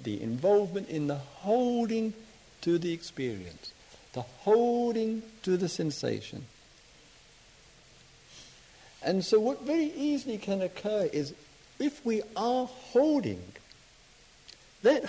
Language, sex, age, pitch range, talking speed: English, male, 60-79, 100-155 Hz, 105 wpm